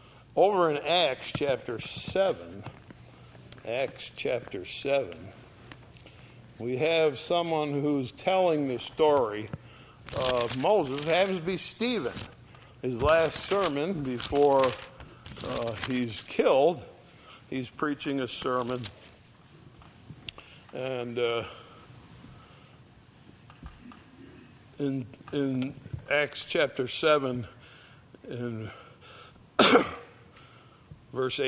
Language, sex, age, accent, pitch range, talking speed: English, male, 60-79, American, 120-160 Hz, 80 wpm